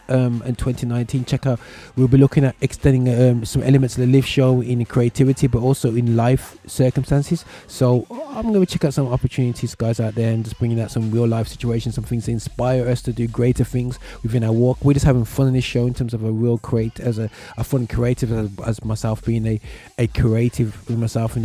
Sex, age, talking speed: male, 20-39, 230 wpm